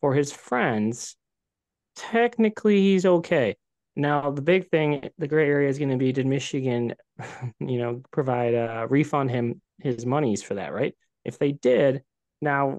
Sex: male